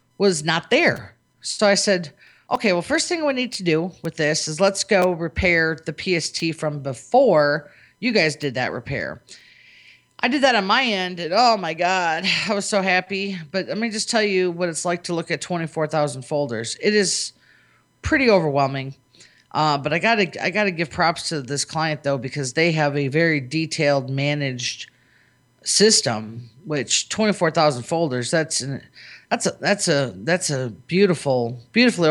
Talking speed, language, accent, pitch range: 185 wpm, English, American, 145-200 Hz